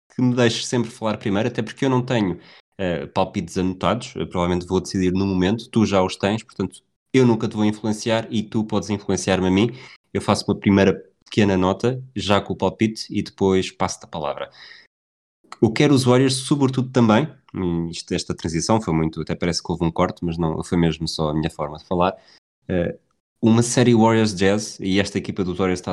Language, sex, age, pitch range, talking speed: Portuguese, male, 20-39, 85-110 Hz, 210 wpm